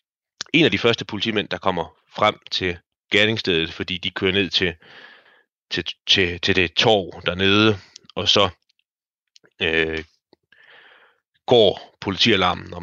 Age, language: 30-49, Danish